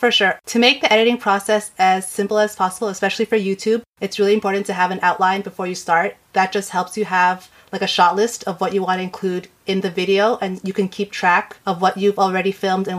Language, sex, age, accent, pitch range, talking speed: English, female, 30-49, American, 185-210 Hz, 245 wpm